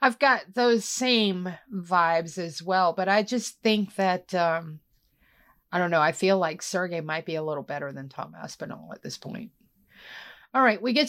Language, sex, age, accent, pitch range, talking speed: English, female, 30-49, American, 210-280 Hz, 190 wpm